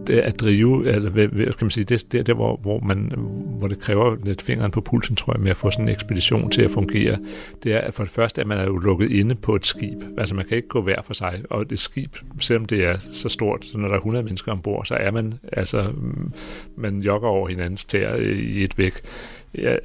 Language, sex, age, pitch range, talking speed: Danish, male, 60-79, 100-115 Hz, 245 wpm